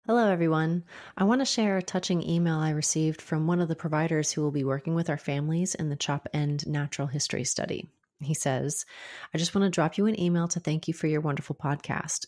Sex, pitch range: female, 145-170 Hz